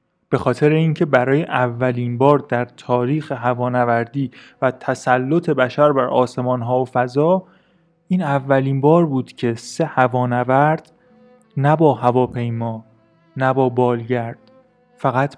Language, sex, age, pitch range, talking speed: Persian, male, 30-49, 125-160 Hz, 115 wpm